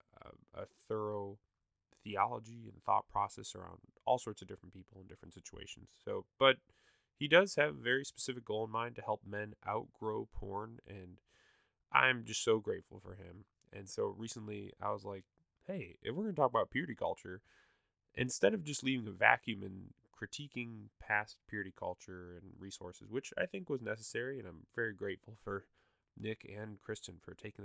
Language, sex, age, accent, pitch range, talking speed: English, male, 20-39, American, 95-115 Hz, 175 wpm